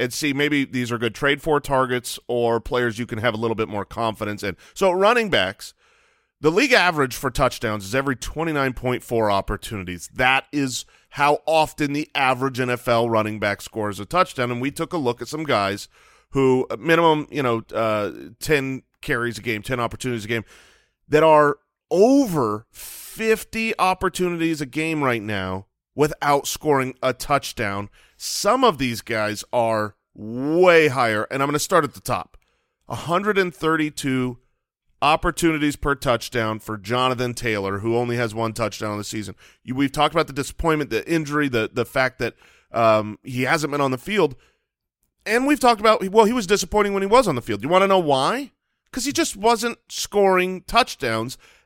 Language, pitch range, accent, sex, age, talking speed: English, 115-160 Hz, American, male, 30-49, 180 wpm